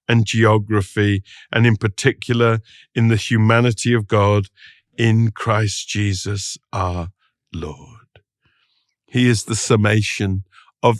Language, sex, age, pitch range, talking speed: English, male, 50-69, 105-135 Hz, 110 wpm